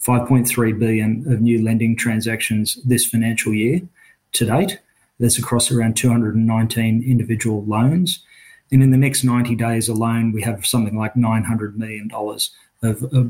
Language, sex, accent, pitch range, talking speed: English, male, Australian, 115-125 Hz, 135 wpm